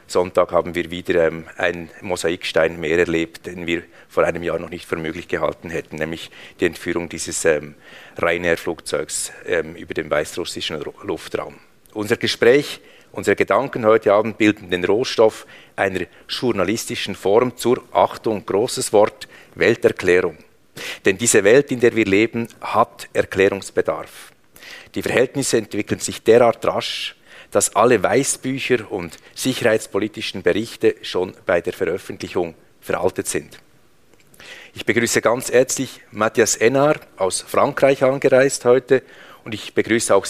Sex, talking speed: male, 130 wpm